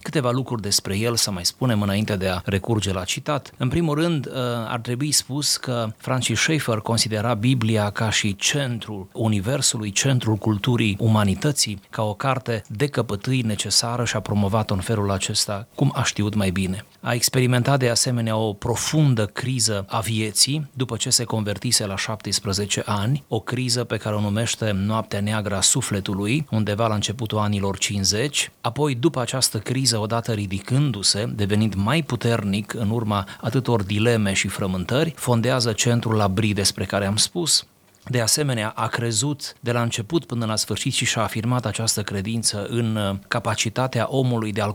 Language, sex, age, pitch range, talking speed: Romanian, male, 30-49, 105-125 Hz, 160 wpm